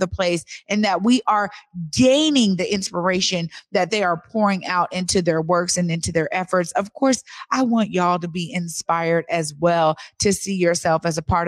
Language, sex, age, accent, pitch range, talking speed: English, female, 30-49, American, 185-225 Hz, 195 wpm